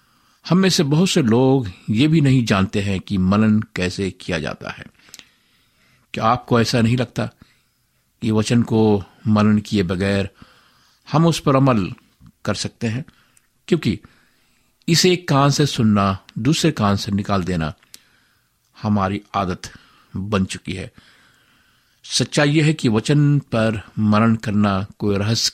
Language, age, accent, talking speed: Hindi, 50-69, native, 145 wpm